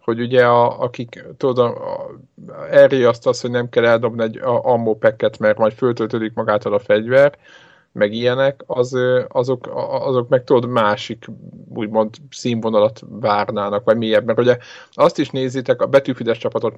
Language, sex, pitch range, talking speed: Hungarian, male, 110-130 Hz, 145 wpm